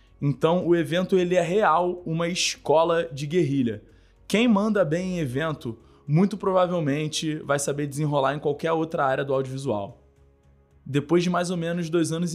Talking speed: 160 wpm